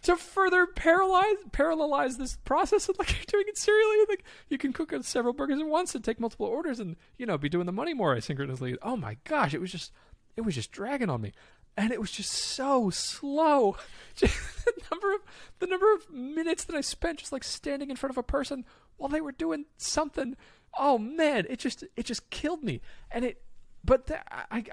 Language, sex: English, male